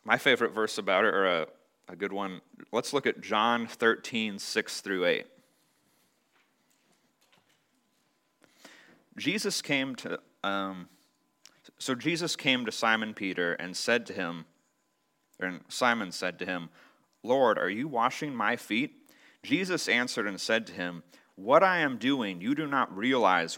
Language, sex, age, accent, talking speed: English, male, 30-49, American, 145 wpm